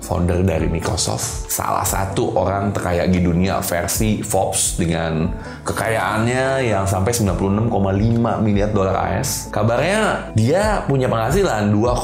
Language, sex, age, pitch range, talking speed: Indonesian, male, 20-39, 95-135 Hz, 115 wpm